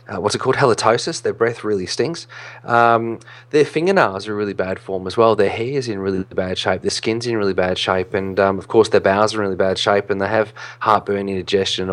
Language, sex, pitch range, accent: English, male, 100-120 Hz, Australian